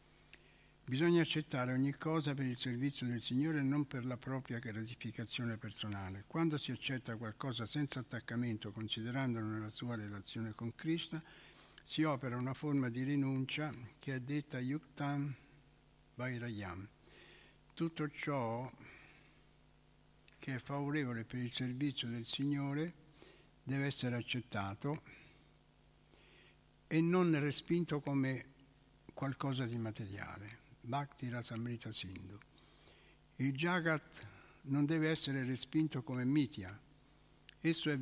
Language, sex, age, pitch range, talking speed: Italian, male, 60-79, 115-145 Hz, 115 wpm